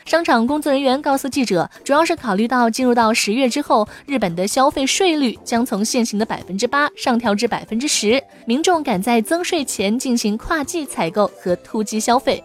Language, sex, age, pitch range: Chinese, female, 20-39, 215-285 Hz